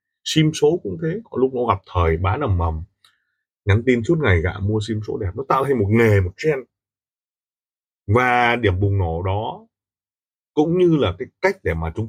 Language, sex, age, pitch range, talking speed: Vietnamese, male, 20-39, 95-125 Hz, 205 wpm